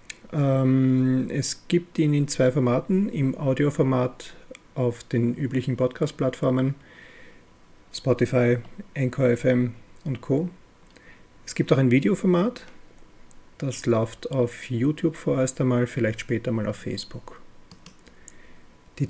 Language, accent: German, German